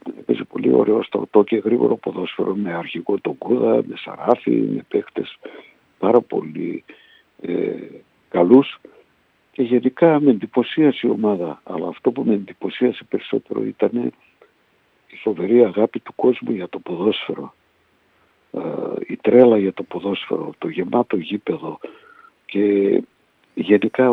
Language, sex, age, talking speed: Greek, male, 60-79, 130 wpm